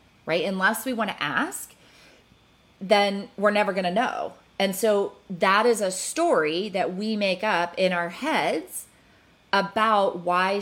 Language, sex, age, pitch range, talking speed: English, female, 30-49, 170-235 Hz, 155 wpm